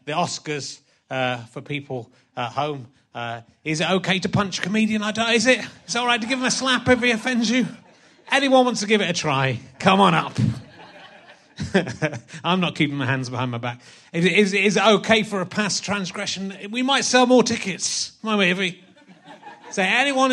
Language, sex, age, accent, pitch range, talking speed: English, male, 30-49, British, 145-215 Hz, 205 wpm